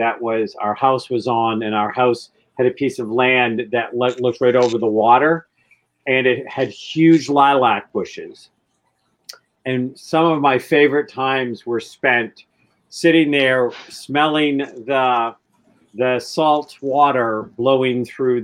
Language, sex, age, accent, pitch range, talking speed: English, male, 50-69, American, 115-140 Hz, 140 wpm